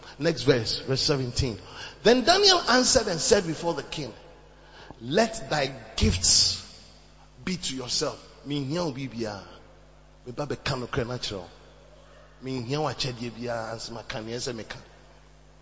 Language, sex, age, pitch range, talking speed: English, male, 30-49, 120-180 Hz, 75 wpm